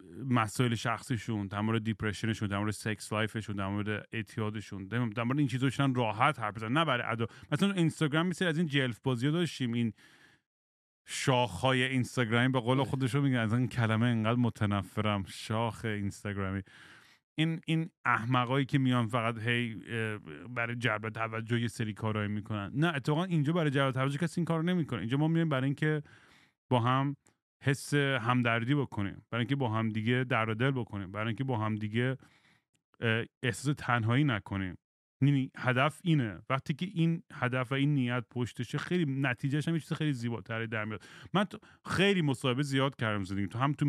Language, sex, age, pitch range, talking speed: English, male, 30-49, 110-140 Hz, 150 wpm